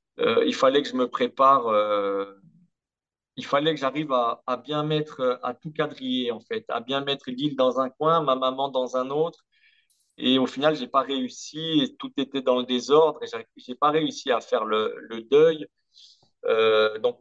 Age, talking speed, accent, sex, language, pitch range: 40-59, 195 wpm, French, male, French, 125-170 Hz